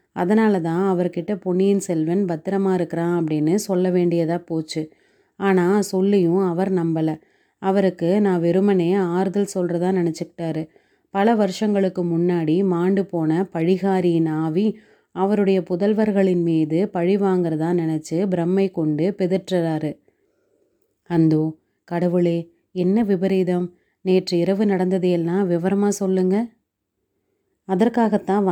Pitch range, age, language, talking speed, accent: 170-195 Hz, 30-49, Tamil, 100 wpm, native